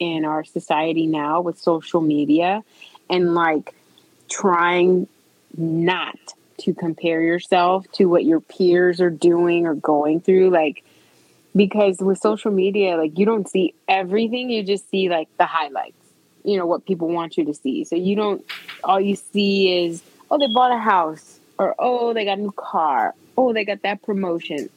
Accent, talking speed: American, 170 wpm